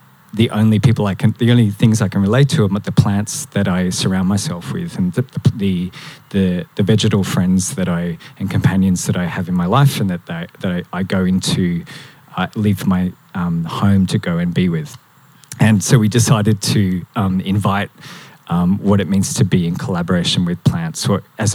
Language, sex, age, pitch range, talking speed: English, male, 20-39, 95-155 Hz, 205 wpm